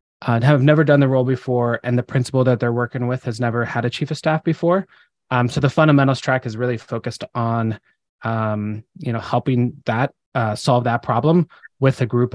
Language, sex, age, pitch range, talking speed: English, male, 20-39, 120-150 Hz, 210 wpm